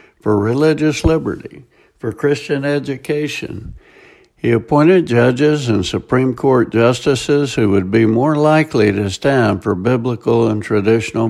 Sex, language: male, English